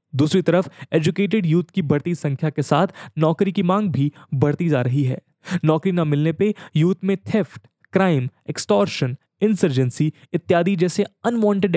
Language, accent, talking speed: English, Indian, 155 wpm